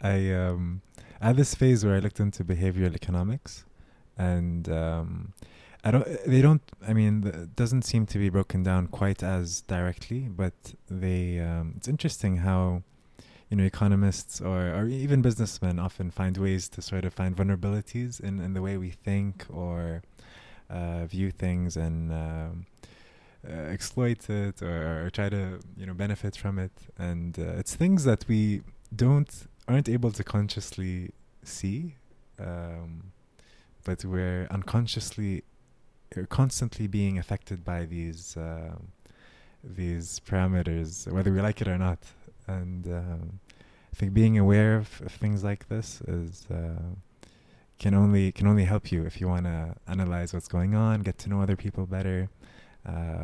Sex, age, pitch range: male, 20-39, 90-105 Hz